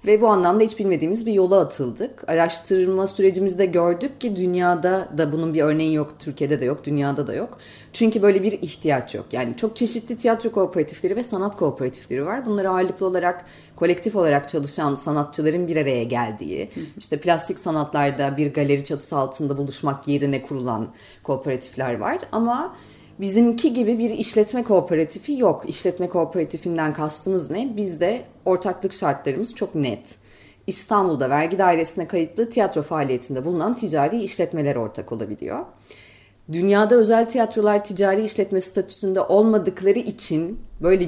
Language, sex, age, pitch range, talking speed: Turkish, female, 30-49, 145-205 Hz, 140 wpm